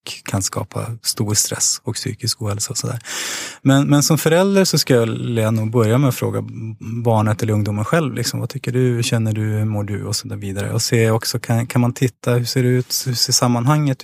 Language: English